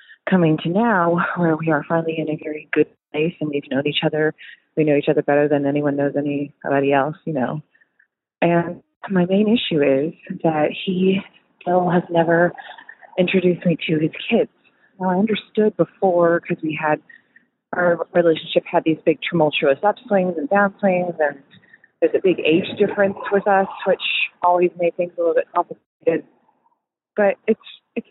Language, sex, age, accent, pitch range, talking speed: English, female, 30-49, American, 155-210 Hz, 170 wpm